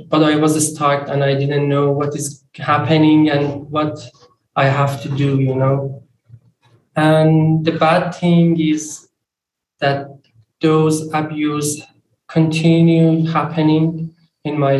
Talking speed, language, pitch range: 125 wpm, English, 150-165 Hz